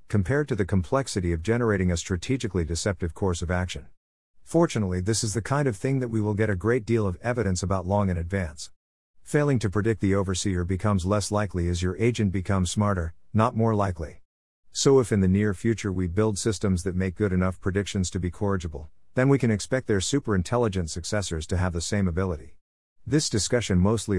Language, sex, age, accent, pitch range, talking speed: English, male, 50-69, American, 85-110 Hz, 200 wpm